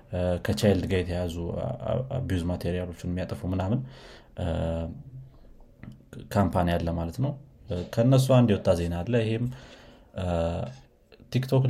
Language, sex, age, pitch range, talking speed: Amharic, male, 30-49, 90-115 Hz, 65 wpm